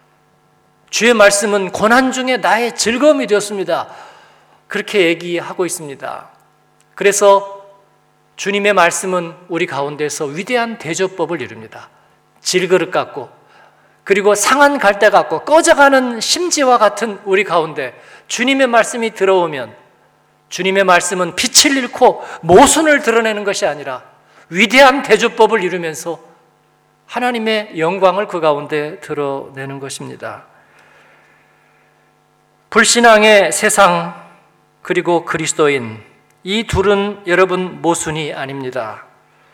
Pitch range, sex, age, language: 170-220 Hz, male, 40-59, Korean